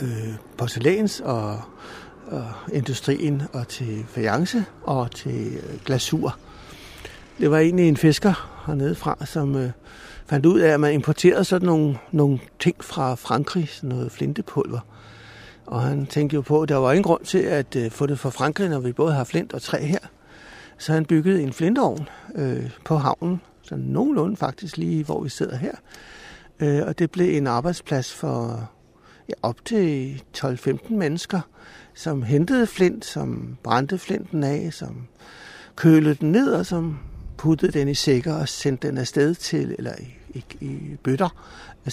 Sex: male